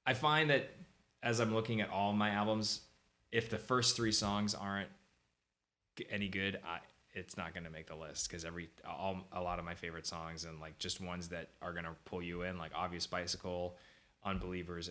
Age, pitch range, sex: 20-39, 80-95 Hz, male